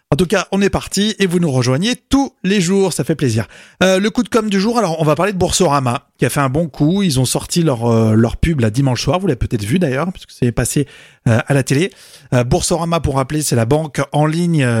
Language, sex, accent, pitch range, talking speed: French, male, French, 135-180 Hz, 270 wpm